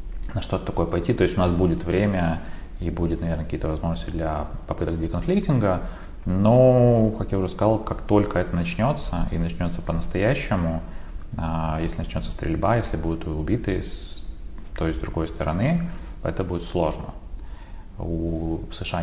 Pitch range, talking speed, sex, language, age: 80-95 Hz, 145 wpm, male, Russian, 30-49